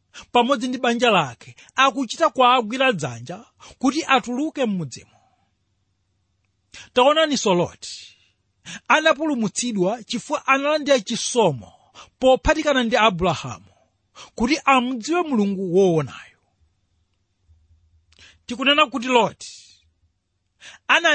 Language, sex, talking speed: English, male, 80 wpm